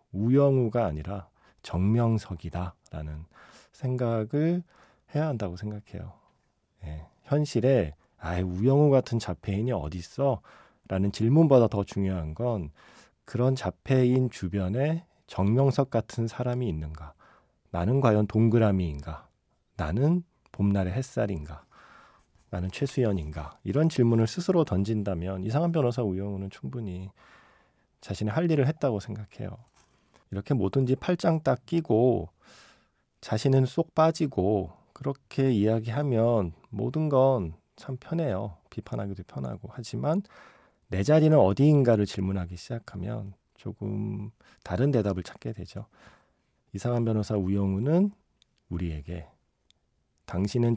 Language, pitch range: Korean, 95-130 Hz